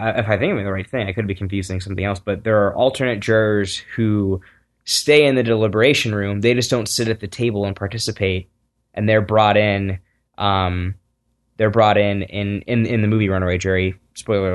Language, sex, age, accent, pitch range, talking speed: English, male, 10-29, American, 95-115 Hz, 205 wpm